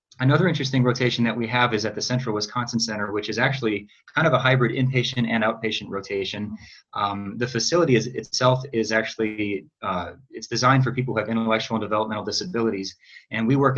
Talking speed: 190 wpm